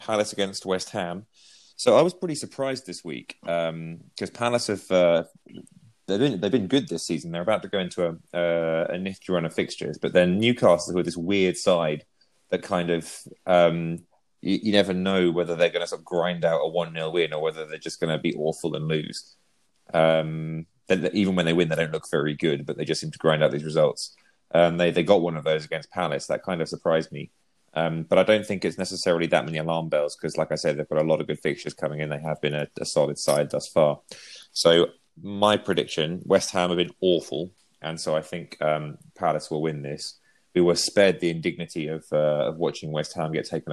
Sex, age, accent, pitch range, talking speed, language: male, 30-49, British, 80-90 Hz, 230 wpm, English